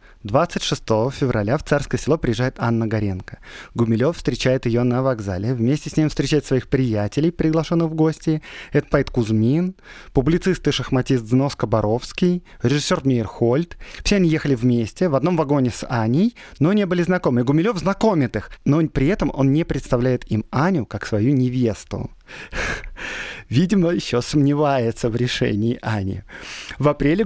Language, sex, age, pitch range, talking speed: Russian, male, 30-49, 120-155 Hz, 150 wpm